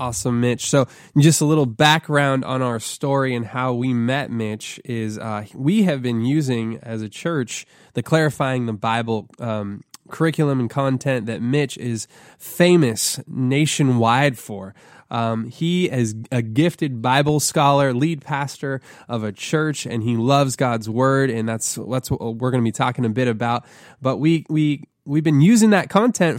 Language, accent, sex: English, American, male